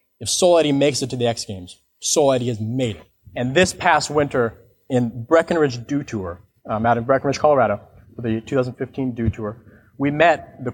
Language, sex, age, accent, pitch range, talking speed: English, male, 30-49, American, 115-150 Hz, 185 wpm